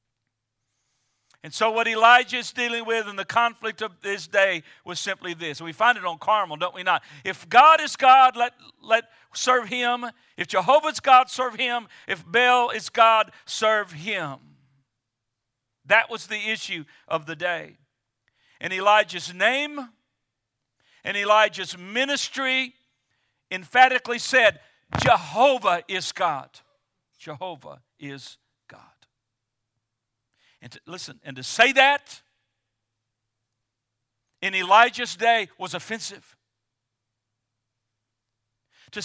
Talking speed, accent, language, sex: 120 wpm, American, English, male